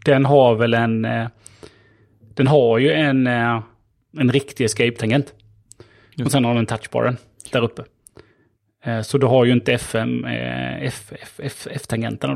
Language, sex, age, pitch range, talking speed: Swedish, male, 30-49, 110-135 Hz, 115 wpm